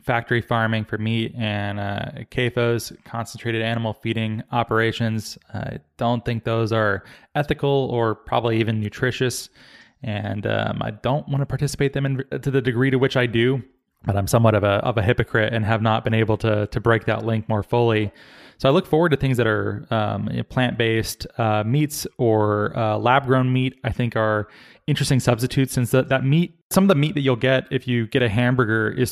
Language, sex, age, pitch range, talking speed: English, male, 20-39, 110-130 Hz, 200 wpm